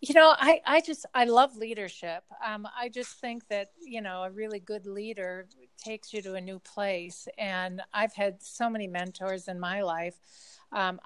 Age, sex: 50-69, female